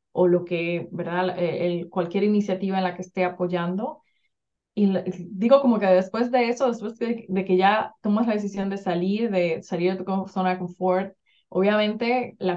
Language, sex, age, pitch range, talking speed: English, female, 20-39, 175-200 Hz, 185 wpm